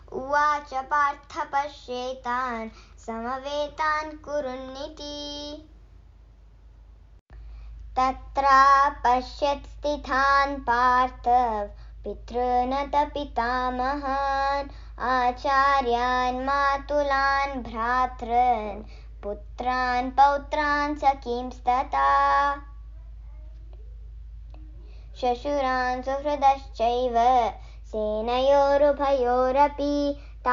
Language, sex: Hindi, male